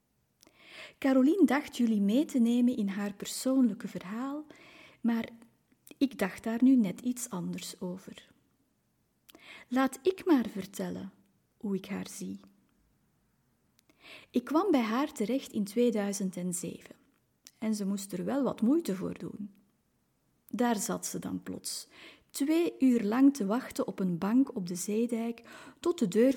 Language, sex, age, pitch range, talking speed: Dutch, female, 30-49, 195-265 Hz, 140 wpm